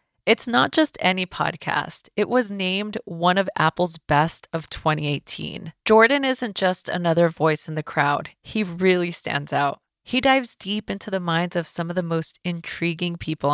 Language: English